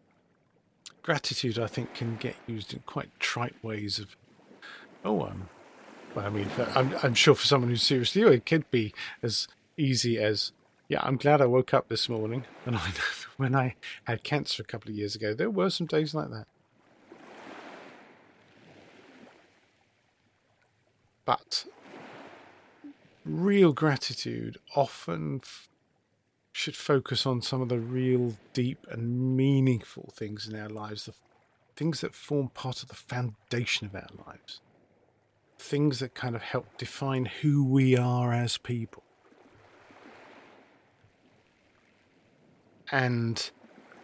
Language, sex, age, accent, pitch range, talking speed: English, male, 40-59, British, 115-135 Hz, 130 wpm